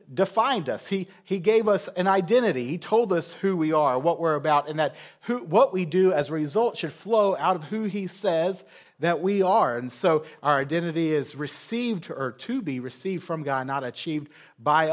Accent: American